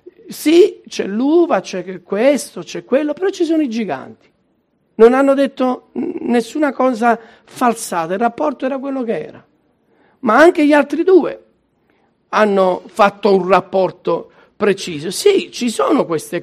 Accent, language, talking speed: native, Italian, 140 wpm